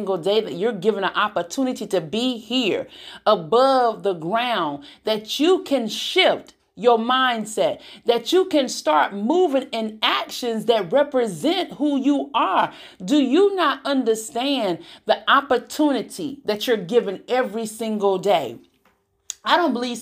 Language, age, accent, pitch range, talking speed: English, 40-59, American, 225-310 Hz, 135 wpm